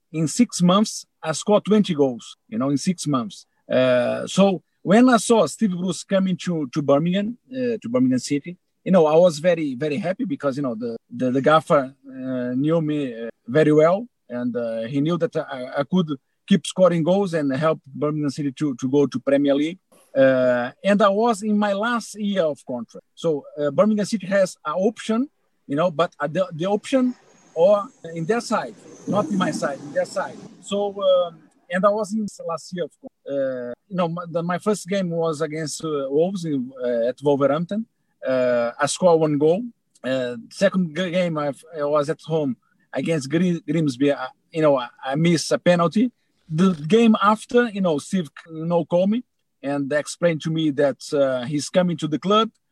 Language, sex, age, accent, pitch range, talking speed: English, male, 50-69, Brazilian, 145-205 Hz, 195 wpm